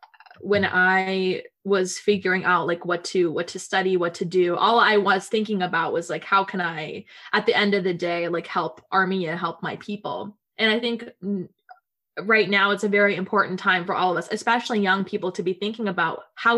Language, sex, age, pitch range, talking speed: English, female, 20-39, 185-220 Hz, 210 wpm